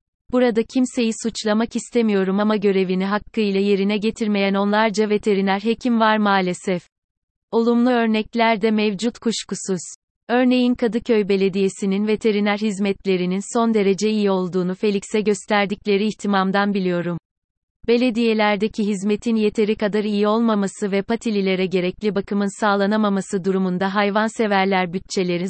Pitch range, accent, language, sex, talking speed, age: 195-225 Hz, native, Turkish, female, 110 wpm, 30-49